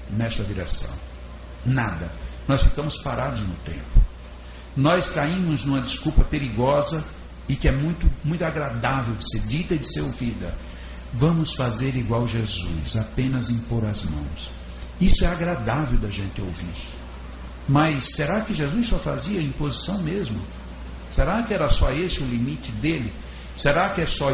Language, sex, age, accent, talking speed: Portuguese, male, 60-79, Brazilian, 150 wpm